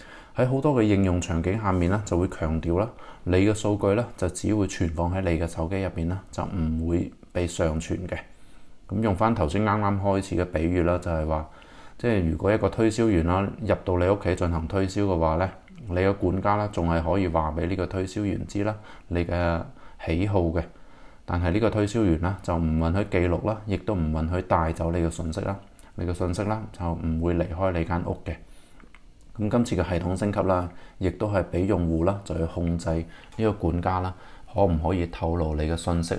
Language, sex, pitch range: Chinese, male, 85-100 Hz